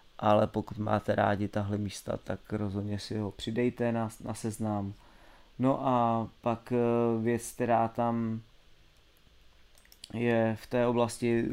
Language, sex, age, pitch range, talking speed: Czech, male, 20-39, 110-120 Hz, 130 wpm